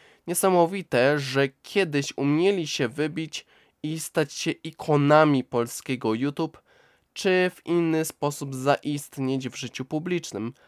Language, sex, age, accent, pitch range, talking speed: Polish, male, 20-39, native, 130-160 Hz, 110 wpm